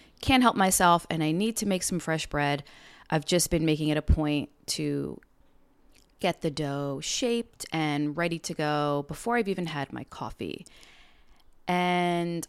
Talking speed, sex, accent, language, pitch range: 165 wpm, female, American, English, 155-195 Hz